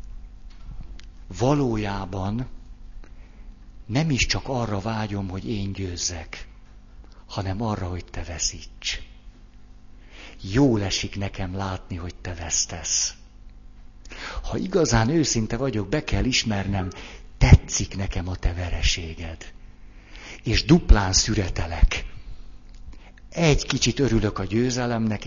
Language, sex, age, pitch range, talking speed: Hungarian, male, 60-79, 95-115 Hz, 95 wpm